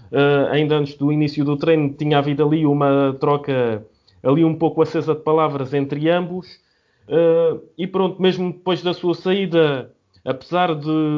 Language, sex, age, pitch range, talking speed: Portuguese, male, 20-39, 145-170 Hz, 160 wpm